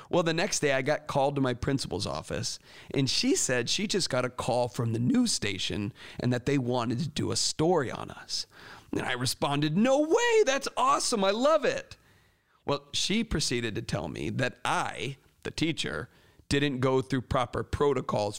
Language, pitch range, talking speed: English, 115-145 Hz, 190 wpm